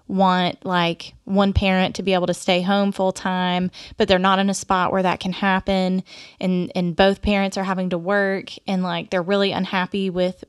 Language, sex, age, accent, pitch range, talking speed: English, female, 20-39, American, 185-215 Hz, 205 wpm